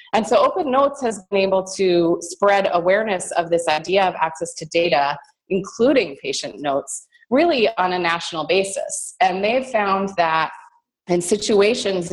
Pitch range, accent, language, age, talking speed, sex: 170-220 Hz, American, English, 30-49, 155 wpm, female